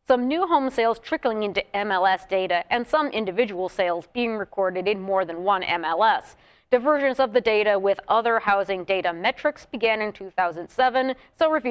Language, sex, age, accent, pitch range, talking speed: English, female, 30-49, American, 195-240 Hz, 160 wpm